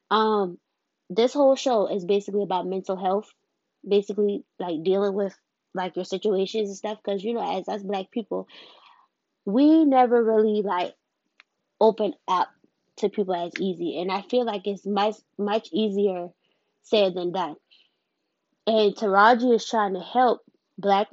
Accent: American